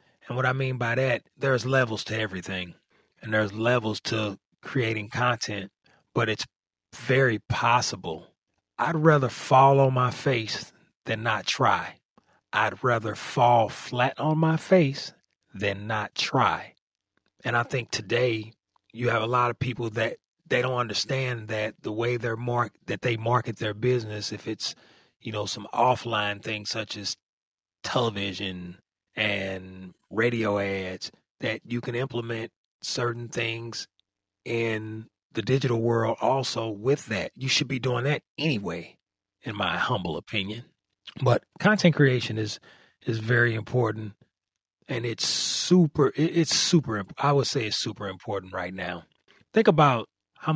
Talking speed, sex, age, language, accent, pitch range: 145 wpm, male, 30-49, English, American, 105-130 Hz